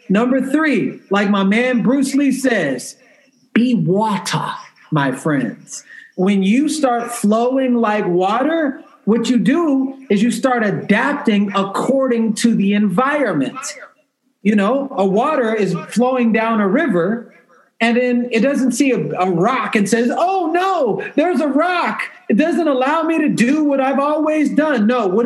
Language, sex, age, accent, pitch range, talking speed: English, male, 40-59, American, 205-265 Hz, 155 wpm